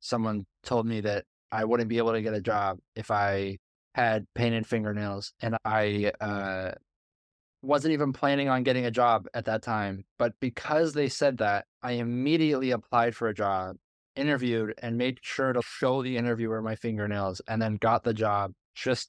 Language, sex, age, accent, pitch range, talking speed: English, male, 20-39, American, 105-120 Hz, 180 wpm